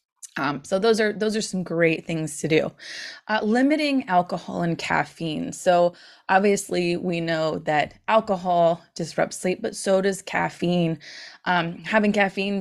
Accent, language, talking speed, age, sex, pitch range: American, English, 150 wpm, 20-39, female, 165-205 Hz